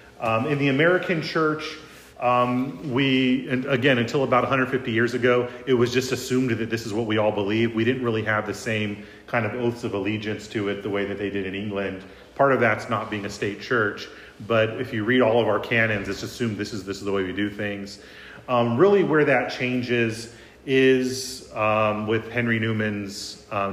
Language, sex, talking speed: English, male, 210 wpm